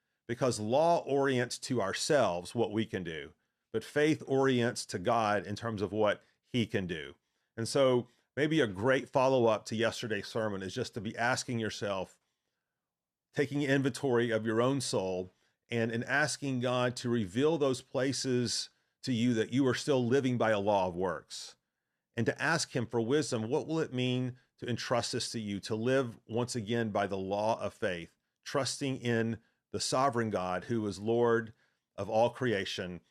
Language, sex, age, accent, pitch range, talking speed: English, male, 40-59, American, 110-135 Hz, 175 wpm